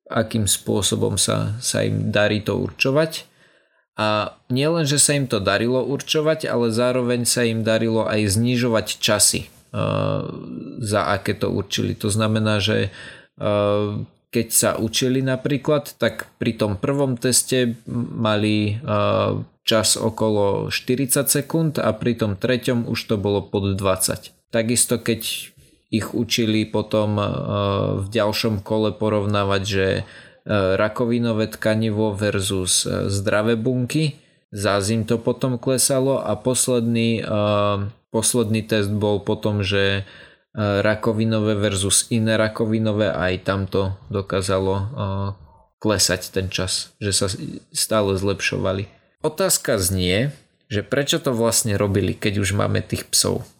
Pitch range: 100-125 Hz